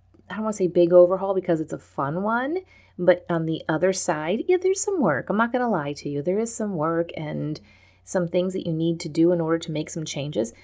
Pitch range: 155-185 Hz